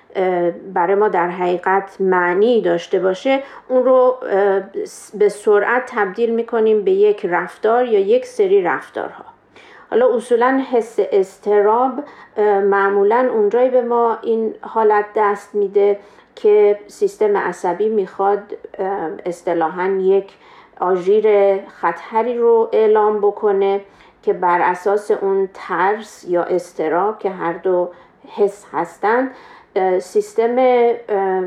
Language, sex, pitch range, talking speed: Persian, female, 190-320 Hz, 105 wpm